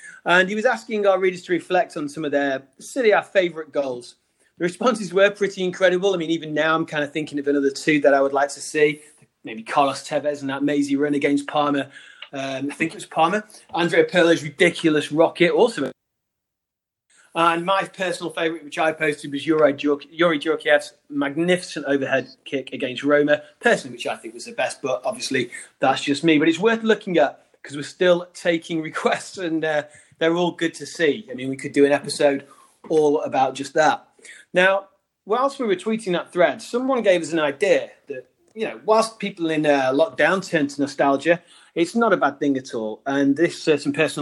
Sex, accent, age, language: male, British, 30-49, English